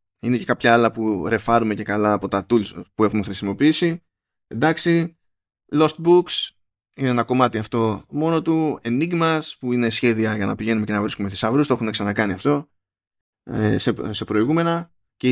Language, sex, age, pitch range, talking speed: Greek, male, 20-39, 105-155 Hz, 165 wpm